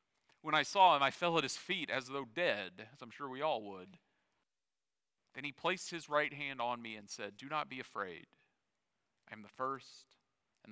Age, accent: 40-59, American